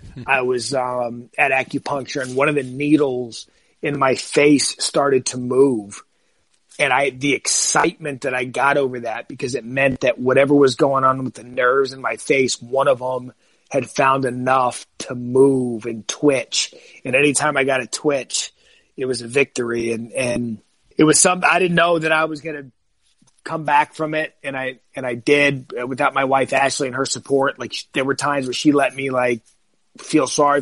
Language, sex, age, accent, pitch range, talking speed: English, male, 30-49, American, 125-140 Hz, 195 wpm